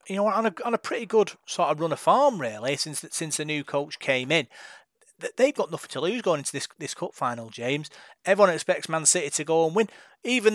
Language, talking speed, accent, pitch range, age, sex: English, 245 wpm, British, 145-185 Hz, 30-49, male